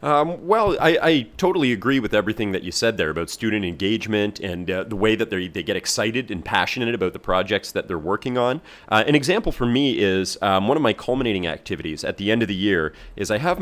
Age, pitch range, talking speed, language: 30-49, 100-130 Hz, 235 wpm, English